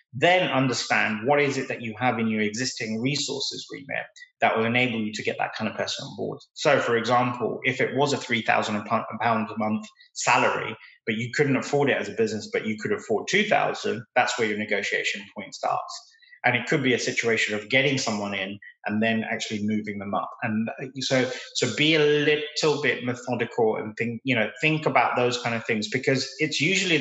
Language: English